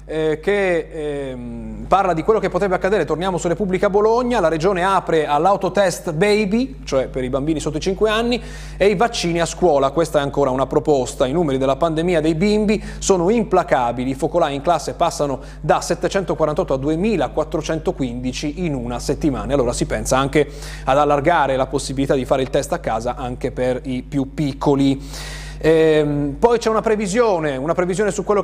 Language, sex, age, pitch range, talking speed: Italian, male, 30-49, 135-180 Hz, 175 wpm